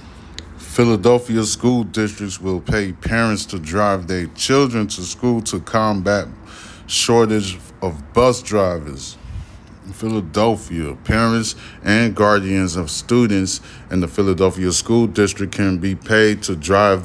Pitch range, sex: 85-105 Hz, male